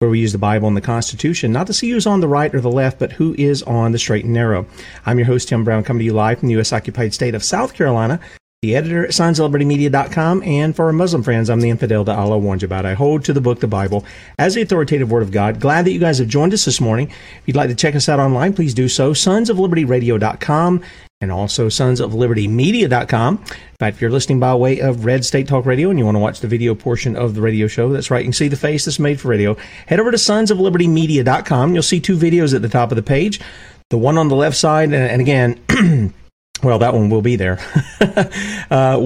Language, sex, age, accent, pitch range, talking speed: English, male, 40-59, American, 115-150 Hz, 245 wpm